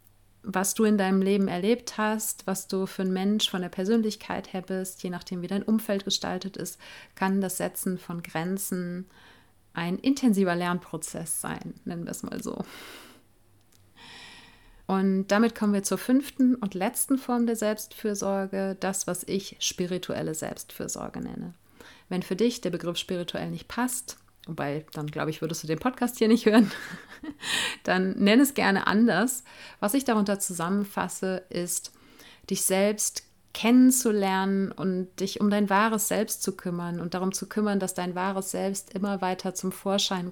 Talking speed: 160 wpm